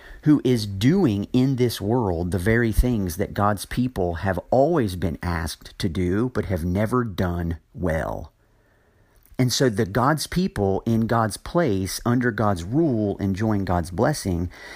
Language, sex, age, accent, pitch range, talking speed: English, male, 40-59, American, 100-130 Hz, 150 wpm